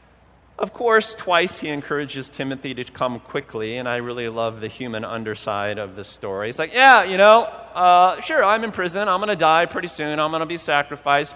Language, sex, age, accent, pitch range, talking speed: English, male, 30-49, American, 125-150 Hz, 210 wpm